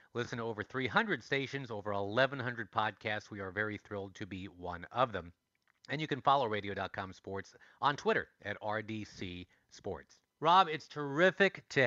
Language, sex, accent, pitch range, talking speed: English, male, American, 105-135 Hz, 160 wpm